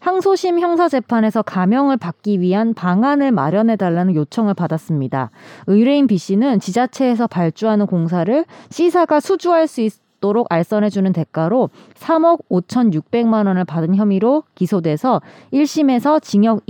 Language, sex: Korean, female